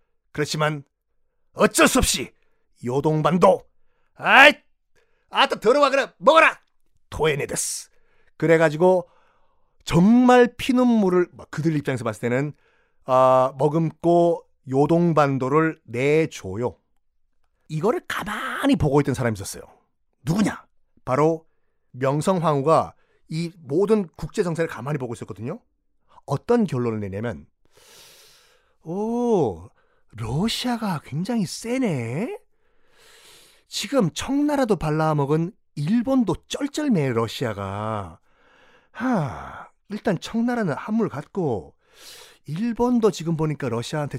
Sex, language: male, Korean